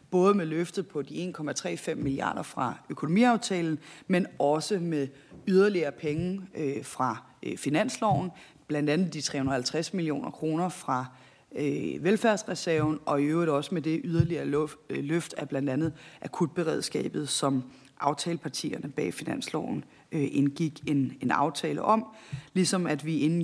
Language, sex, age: Danish, female, 30-49